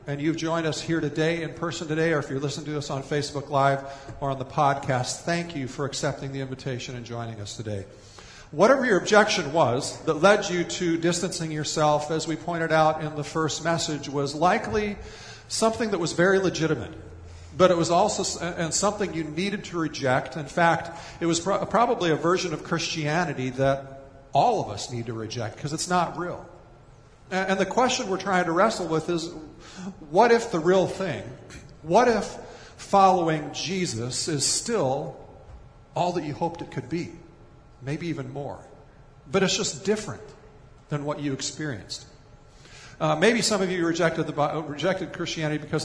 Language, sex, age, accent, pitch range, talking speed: English, male, 50-69, American, 135-170 Hz, 180 wpm